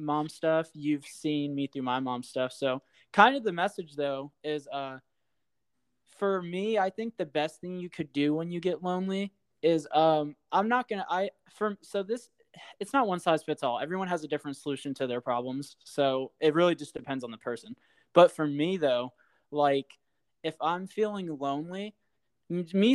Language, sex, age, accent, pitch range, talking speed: English, male, 20-39, American, 140-180 Hz, 190 wpm